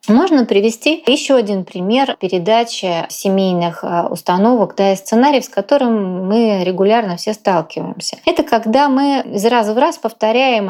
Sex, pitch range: female, 180-230 Hz